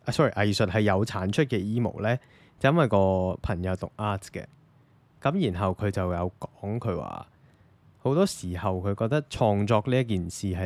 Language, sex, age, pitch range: Chinese, male, 20-39, 95-125 Hz